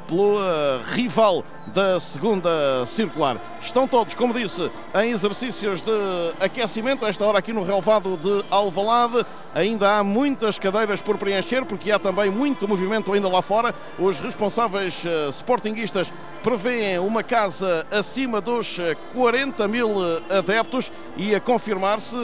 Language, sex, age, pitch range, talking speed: Portuguese, male, 50-69, 175-215 Hz, 135 wpm